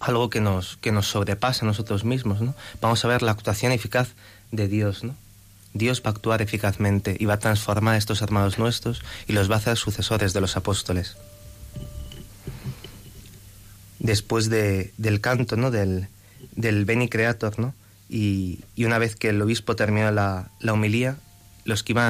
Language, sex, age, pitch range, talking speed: Spanish, male, 30-49, 100-115 Hz, 175 wpm